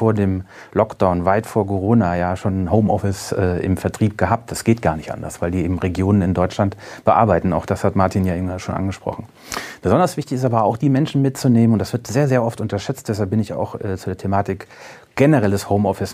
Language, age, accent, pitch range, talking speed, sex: German, 30-49, German, 100-120 Hz, 210 wpm, male